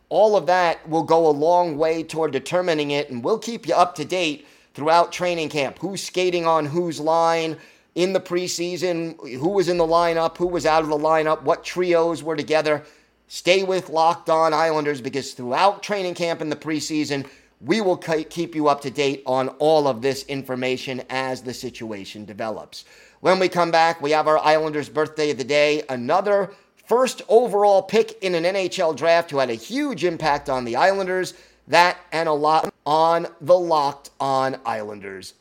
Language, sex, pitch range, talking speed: English, male, 145-175 Hz, 185 wpm